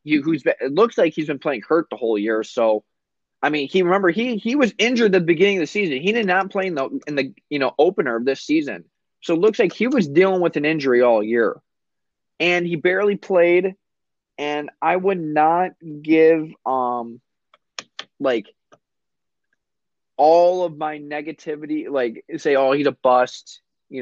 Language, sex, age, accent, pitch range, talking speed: English, male, 20-39, American, 130-180 Hz, 190 wpm